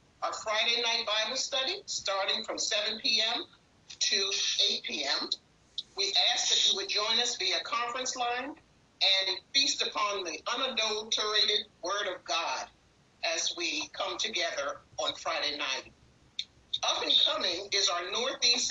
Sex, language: male, English